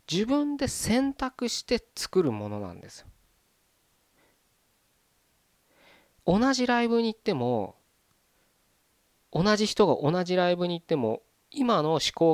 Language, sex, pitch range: Japanese, male, 110-175 Hz